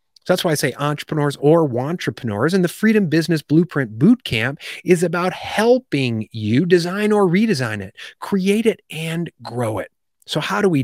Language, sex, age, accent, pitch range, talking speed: English, male, 30-49, American, 120-180 Hz, 170 wpm